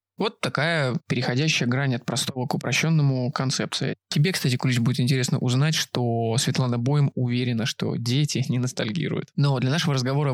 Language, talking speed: Russian, 155 wpm